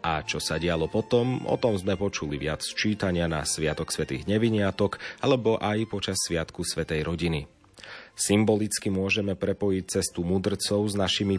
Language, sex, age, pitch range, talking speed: Slovak, male, 30-49, 85-105 Hz, 150 wpm